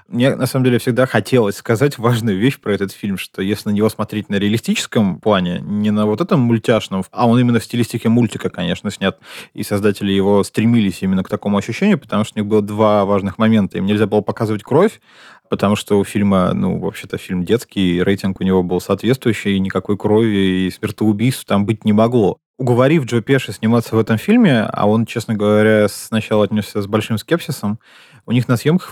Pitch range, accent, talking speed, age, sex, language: 105-130 Hz, native, 200 wpm, 20-39, male, Russian